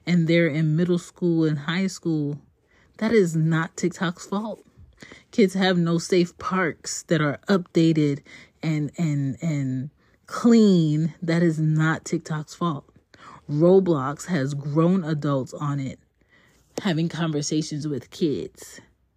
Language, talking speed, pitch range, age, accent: English, 125 wpm, 150-190 Hz, 30-49, American